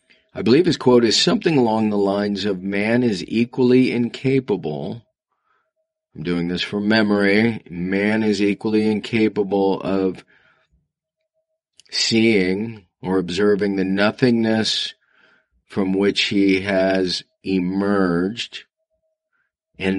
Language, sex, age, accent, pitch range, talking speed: English, male, 40-59, American, 95-115 Hz, 105 wpm